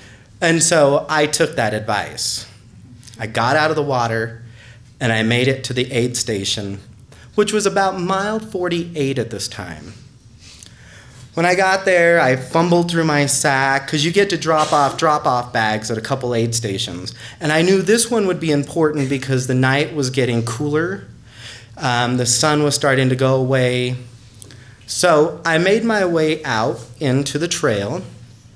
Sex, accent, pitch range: male, American, 115-155 Hz